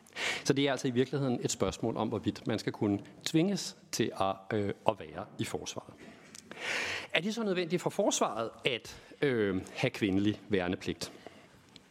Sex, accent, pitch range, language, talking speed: male, native, 105-150 Hz, Danish, 160 wpm